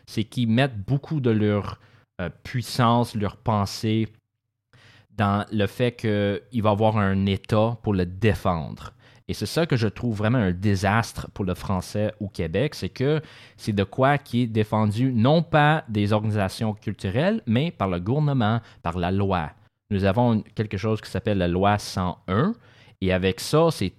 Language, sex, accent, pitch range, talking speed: French, male, Canadian, 100-120 Hz, 175 wpm